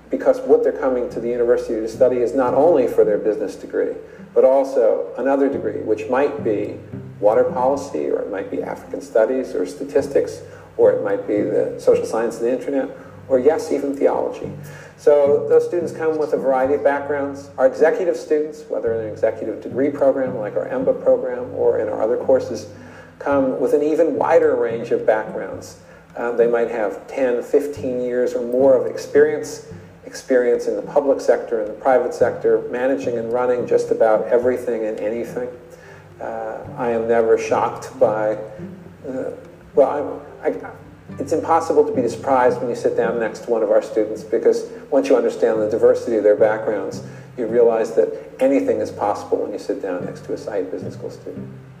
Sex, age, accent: male, 50-69, American